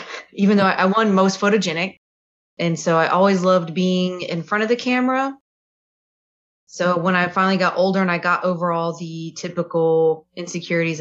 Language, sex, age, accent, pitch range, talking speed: English, female, 20-39, American, 160-185 Hz, 170 wpm